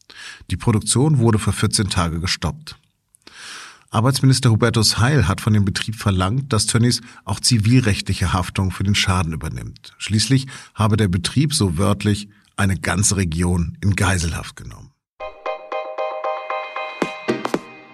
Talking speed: 120 wpm